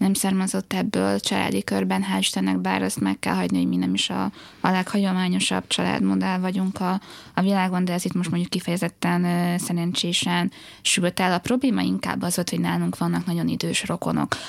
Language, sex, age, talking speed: Hungarian, female, 20-39, 180 wpm